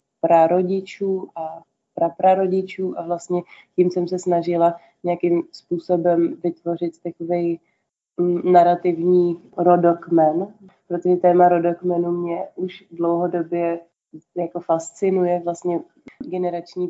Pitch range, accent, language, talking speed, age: 165-175 Hz, native, Czech, 90 wpm, 20-39